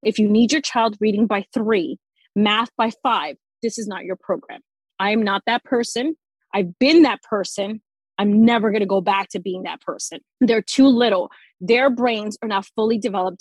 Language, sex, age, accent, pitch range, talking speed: English, female, 30-49, American, 200-250 Hz, 195 wpm